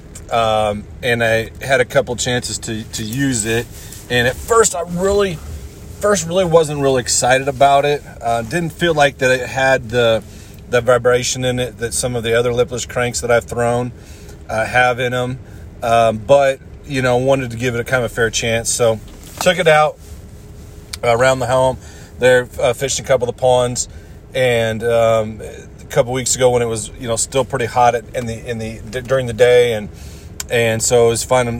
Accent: American